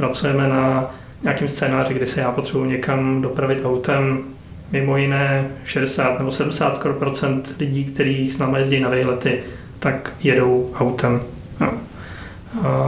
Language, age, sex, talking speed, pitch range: Czech, 30-49, male, 130 wpm, 130-145 Hz